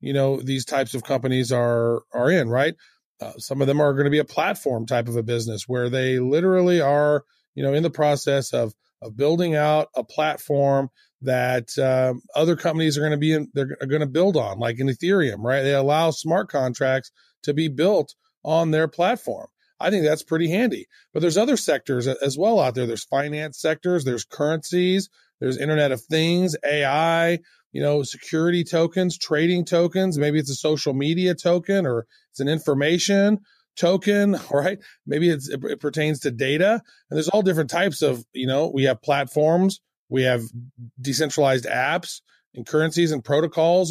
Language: English